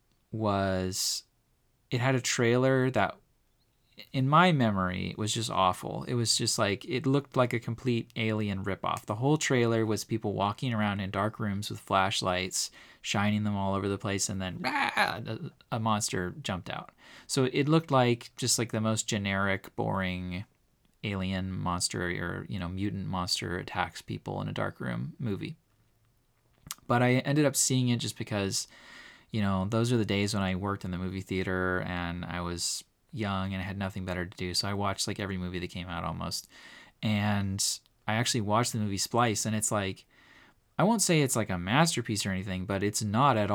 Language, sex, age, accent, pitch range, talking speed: English, male, 20-39, American, 95-120 Hz, 190 wpm